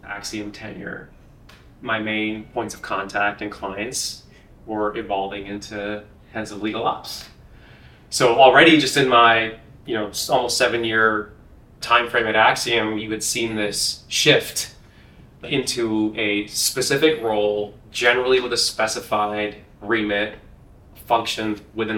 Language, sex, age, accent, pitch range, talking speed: English, male, 20-39, American, 105-120 Hz, 125 wpm